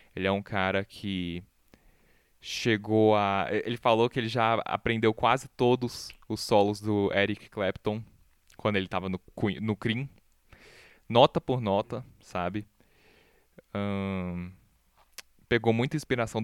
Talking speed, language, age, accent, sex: 120 wpm, Portuguese, 20-39, Brazilian, male